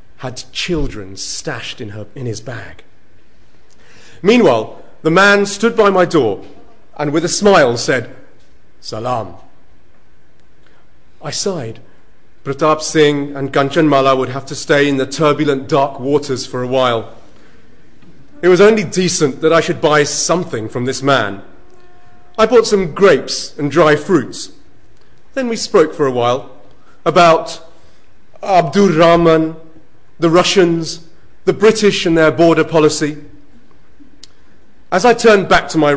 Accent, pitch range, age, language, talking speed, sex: British, 130-180 Hz, 40-59, English, 135 wpm, male